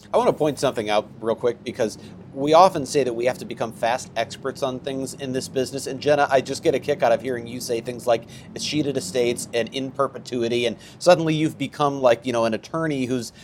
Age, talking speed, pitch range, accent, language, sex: 40-59, 235 wpm, 120-160 Hz, American, English, male